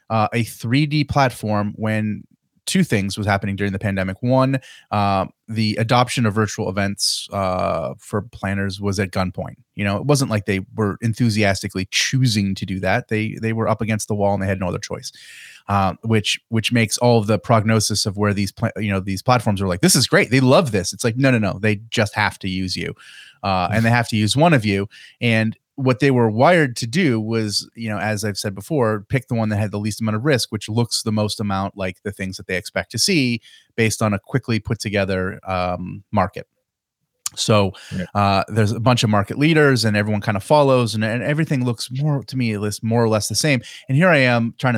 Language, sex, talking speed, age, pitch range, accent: English, male, 225 wpm, 30-49, 100-120 Hz, American